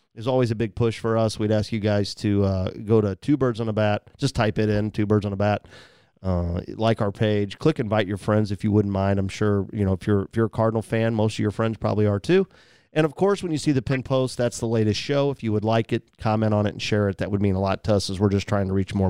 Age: 40-59